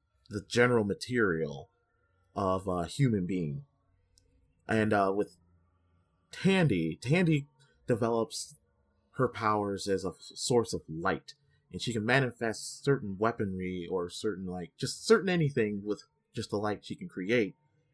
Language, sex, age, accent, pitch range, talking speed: English, male, 30-49, American, 95-135 Hz, 135 wpm